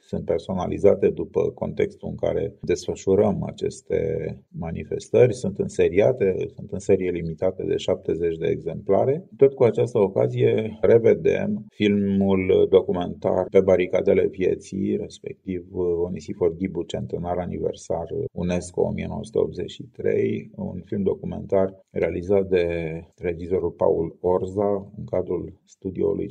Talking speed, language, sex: 110 wpm, English, male